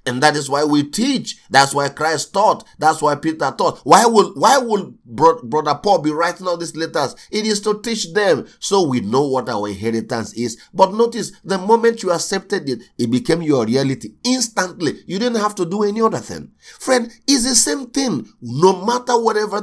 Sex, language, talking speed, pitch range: male, English, 200 wpm, 115-185 Hz